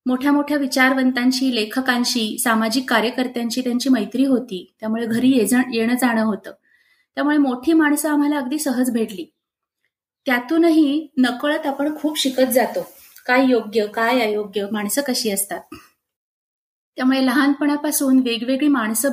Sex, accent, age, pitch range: female, native, 30-49, 230-285 Hz